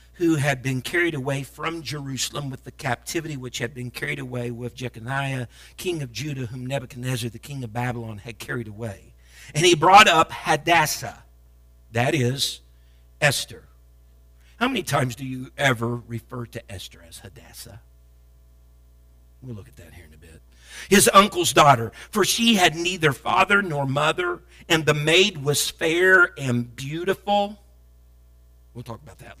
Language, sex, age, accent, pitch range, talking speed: English, male, 50-69, American, 115-165 Hz, 155 wpm